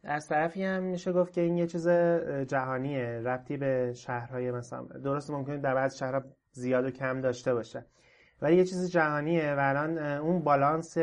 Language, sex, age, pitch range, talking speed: Persian, male, 30-49, 125-150 Hz, 175 wpm